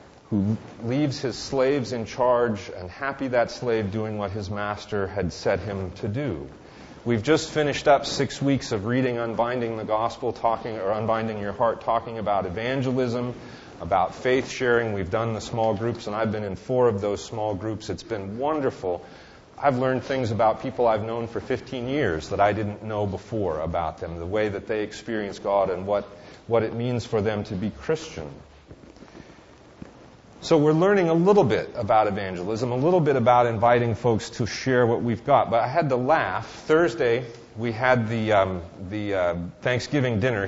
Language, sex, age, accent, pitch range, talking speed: English, male, 40-59, American, 105-130 Hz, 185 wpm